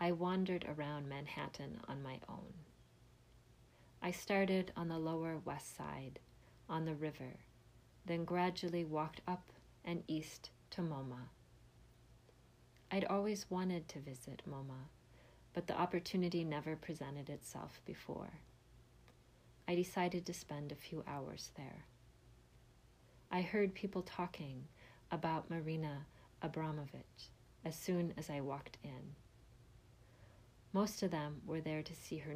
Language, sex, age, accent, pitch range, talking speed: English, female, 40-59, American, 135-175 Hz, 125 wpm